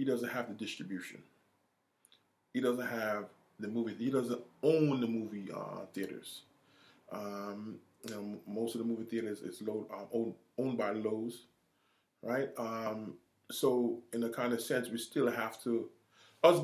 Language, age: English, 20-39